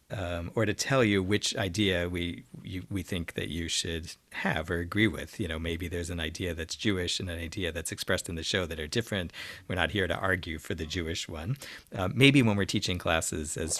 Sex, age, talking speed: male, 50-69, 230 wpm